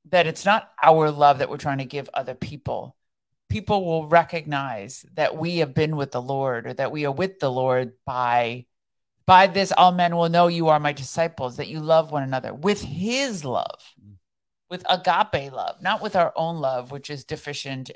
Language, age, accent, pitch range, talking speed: English, 50-69, American, 135-165 Hz, 195 wpm